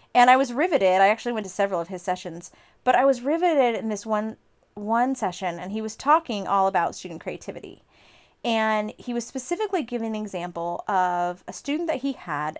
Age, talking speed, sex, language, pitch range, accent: 30-49, 200 wpm, female, English, 195-255 Hz, American